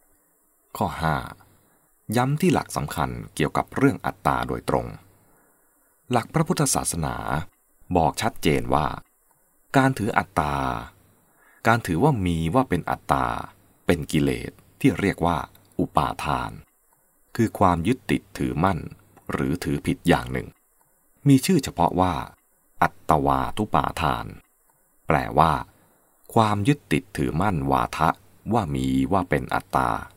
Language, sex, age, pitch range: English, male, 20-39, 75-120 Hz